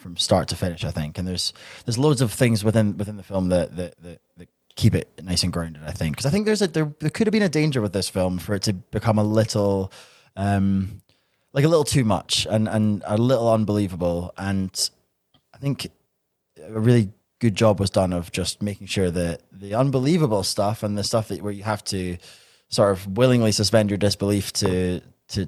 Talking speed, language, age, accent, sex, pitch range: 215 wpm, English, 20-39, British, male, 90-115 Hz